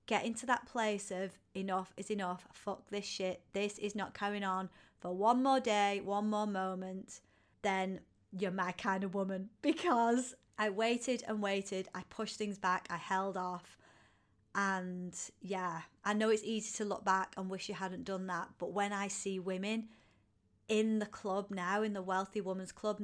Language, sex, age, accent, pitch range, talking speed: English, female, 30-49, British, 185-215 Hz, 180 wpm